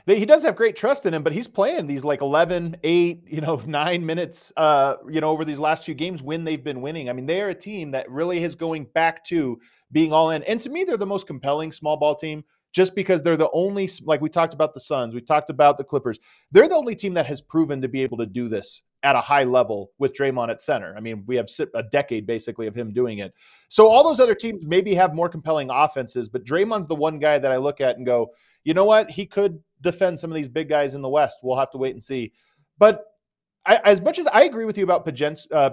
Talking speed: 265 wpm